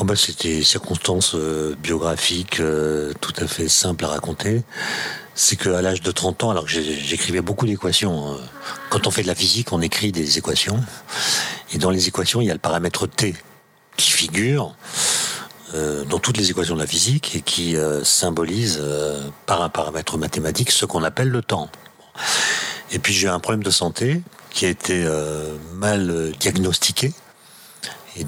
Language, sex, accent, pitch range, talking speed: French, male, French, 85-110 Hz, 180 wpm